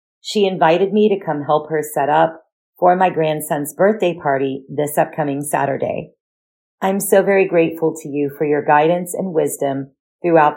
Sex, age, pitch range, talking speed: female, 40-59, 150-185 Hz, 165 wpm